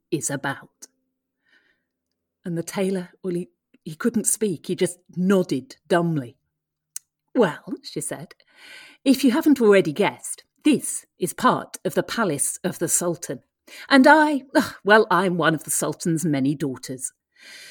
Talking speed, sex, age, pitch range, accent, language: 140 wpm, female, 40-59, 175-260 Hz, British, English